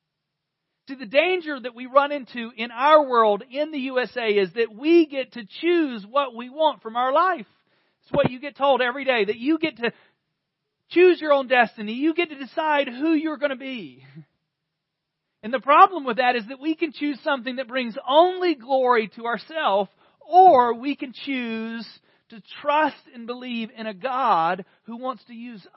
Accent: American